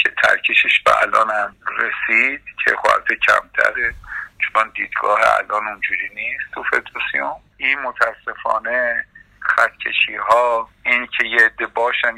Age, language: 50-69, Persian